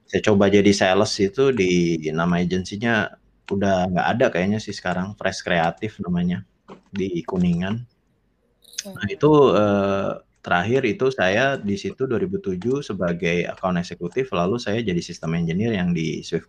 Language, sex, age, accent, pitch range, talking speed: Indonesian, male, 30-49, native, 90-125 Hz, 140 wpm